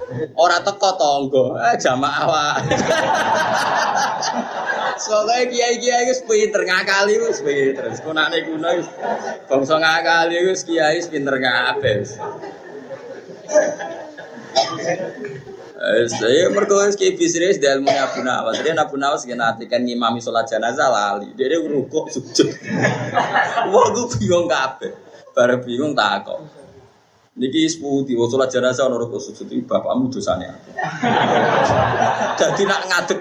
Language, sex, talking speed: Malay, male, 115 wpm